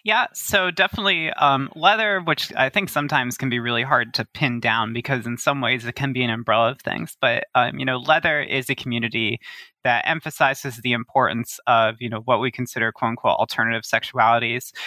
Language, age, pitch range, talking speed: English, 20-39, 120-145 Hz, 200 wpm